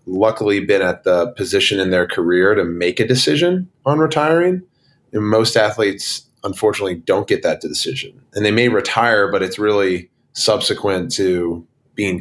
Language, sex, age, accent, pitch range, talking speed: English, male, 30-49, American, 90-110 Hz, 155 wpm